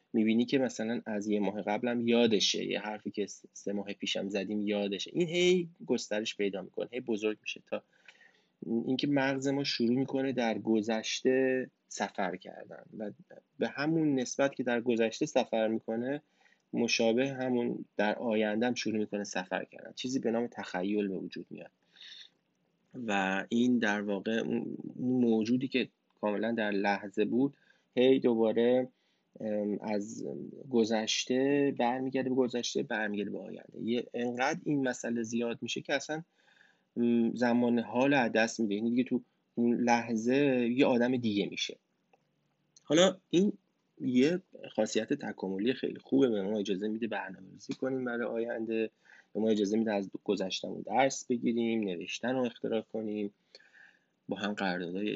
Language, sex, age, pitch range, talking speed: Persian, male, 20-39, 105-125 Hz, 140 wpm